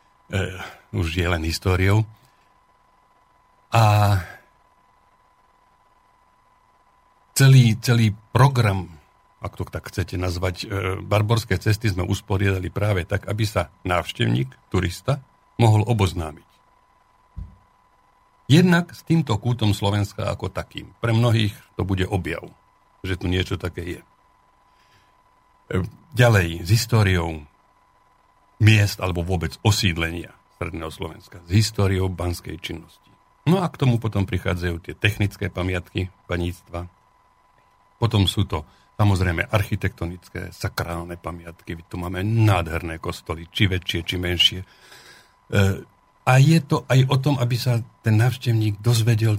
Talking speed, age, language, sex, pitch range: 115 wpm, 60-79, Slovak, male, 90-110 Hz